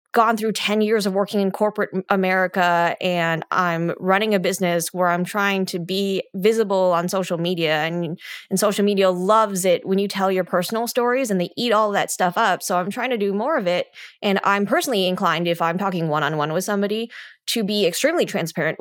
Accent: American